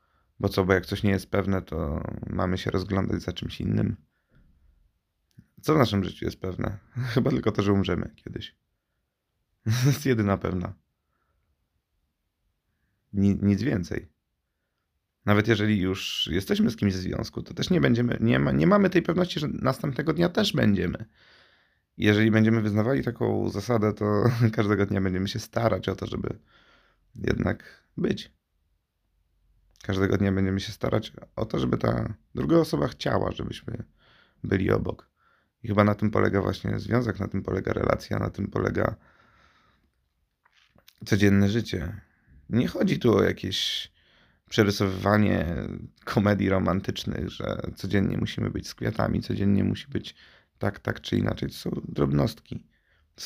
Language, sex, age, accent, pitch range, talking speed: Polish, male, 30-49, native, 95-115 Hz, 145 wpm